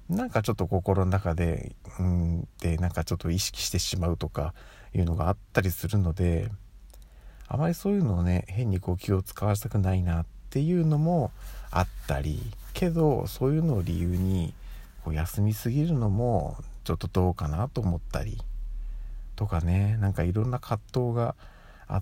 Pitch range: 85-120 Hz